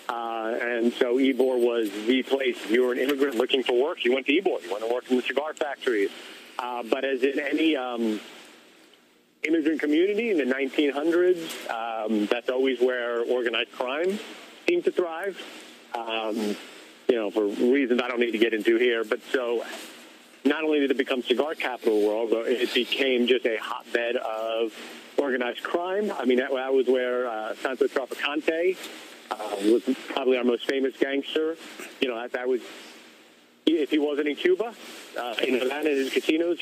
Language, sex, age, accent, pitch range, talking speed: English, male, 40-59, American, 120-165 Hz, 180 wpm